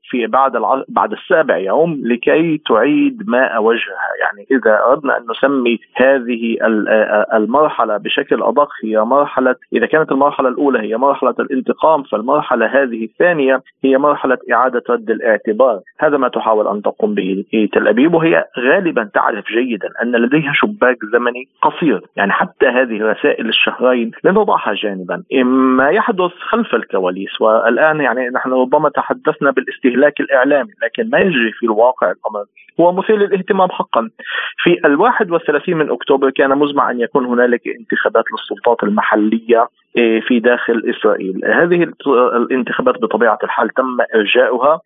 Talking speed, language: 135 wpm, Arabic